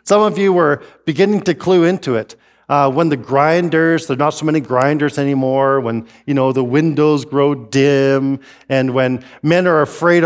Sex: male